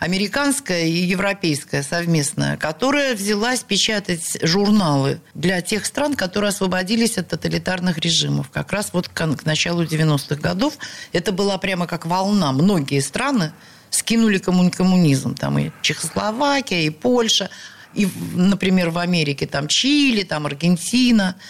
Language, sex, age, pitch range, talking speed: Russian, female, 50-69, 170-215 Hz, 125 wpm